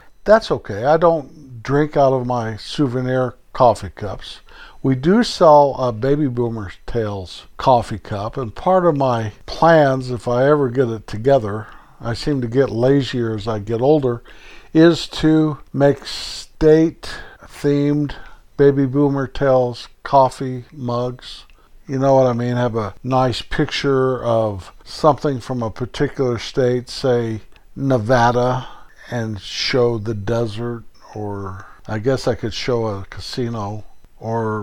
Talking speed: 135 wpm